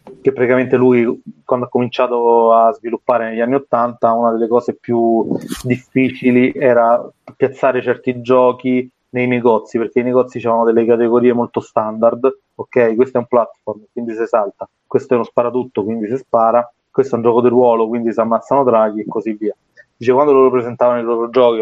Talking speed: 180 wpm